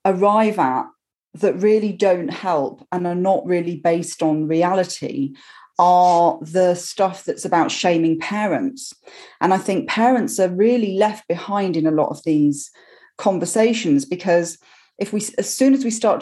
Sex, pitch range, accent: female, 165-210 Hz, British